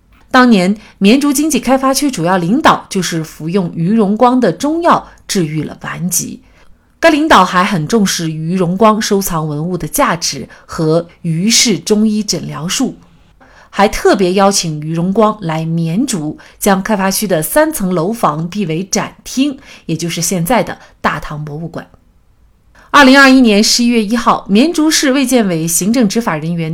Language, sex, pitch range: Chinese, female, 170-250 Hz